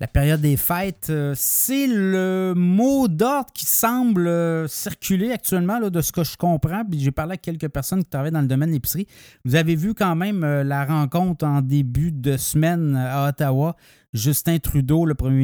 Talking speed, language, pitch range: 190 wpm, French, 140-175 Hz